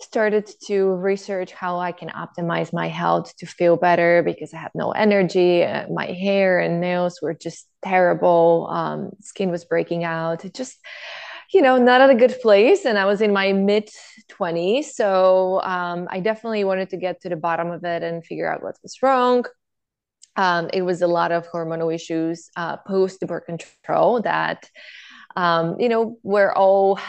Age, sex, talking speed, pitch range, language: 20-39, female, 185 wpm, 170-195 Hz, English